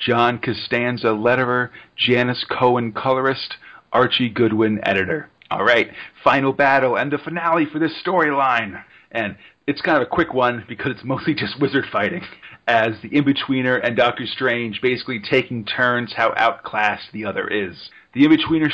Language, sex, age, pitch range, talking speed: English, male, 40-59, 115-135 Hz, 155 wpm